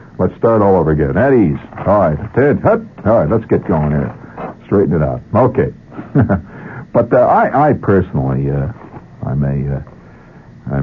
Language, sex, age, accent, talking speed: English, male, 60-79, American, 155 wpm